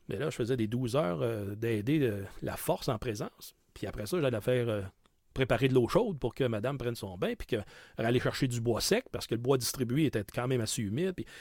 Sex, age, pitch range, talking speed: male, 40-59, 115-145 Hz, 250 wpm